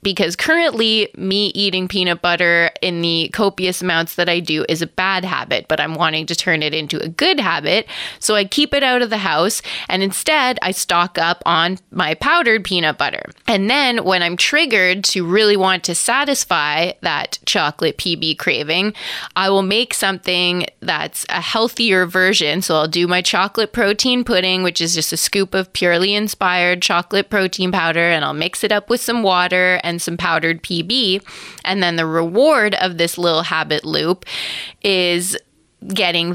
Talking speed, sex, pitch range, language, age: 180 wpm, female, 170-210 Hz, English, 20-39